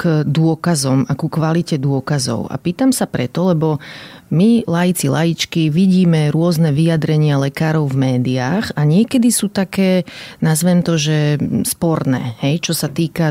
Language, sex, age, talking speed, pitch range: Slovak, female, 30-49, 145 wpm, 145-170 Hz